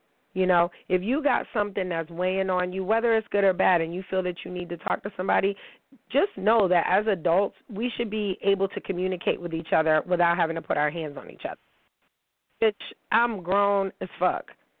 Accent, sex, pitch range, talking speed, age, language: American, female, 175-205 Hz, 215 wpm, 30-49, English